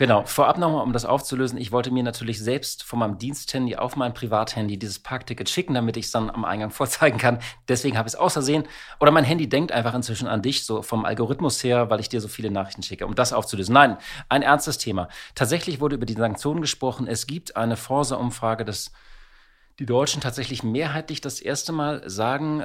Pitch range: 110-135 Hz